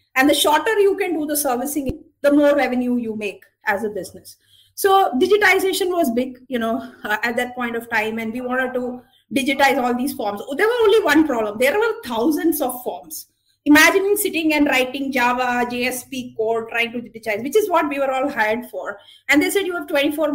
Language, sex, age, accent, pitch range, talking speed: English, female, 30-49, Indian, 235-310 Hz, 205 wpm